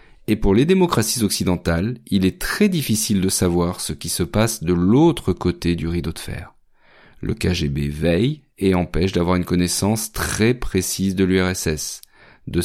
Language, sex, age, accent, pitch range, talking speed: French, male, 40-59, French, 85-105 Hz, 165 wpm